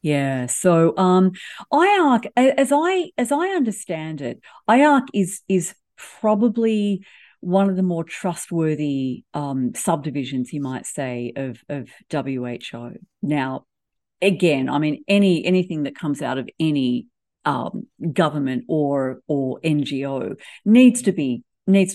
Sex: female